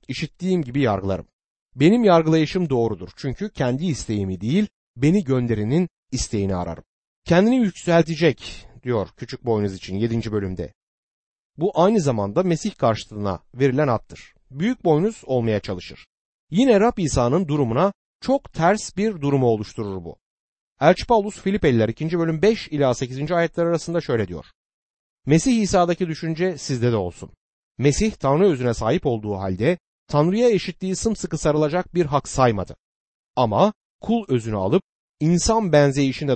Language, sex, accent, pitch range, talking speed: Turkish, male, native, 115-175 Hz, 130 wpm